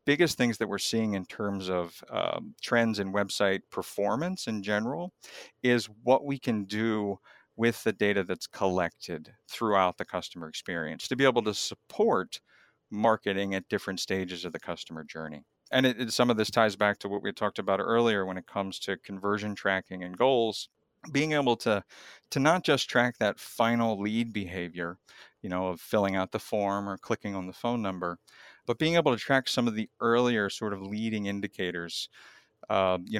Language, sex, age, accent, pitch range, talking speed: English, male, 50-69, American, 95-115 Hz, 185 wpm